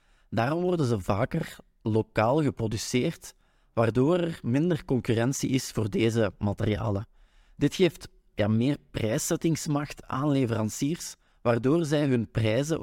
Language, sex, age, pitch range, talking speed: Dutch, male, 30-49, 110-145 Hz, 110 wpm